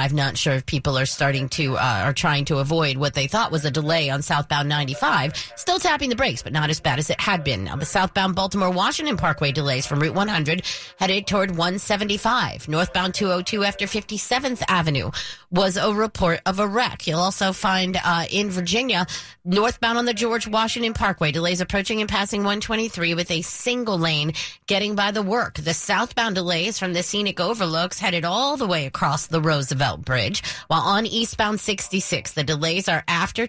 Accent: American